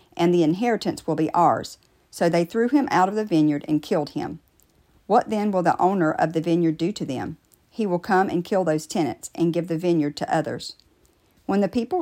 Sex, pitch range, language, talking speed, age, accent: female, 155-195 Hz, English, 220 wpm, 50-69, American